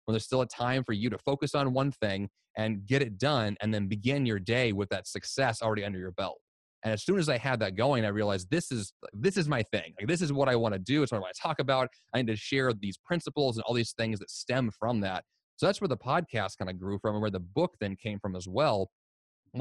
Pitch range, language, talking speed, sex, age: 105-130 Hz, English, 280 wpm, male, 30-49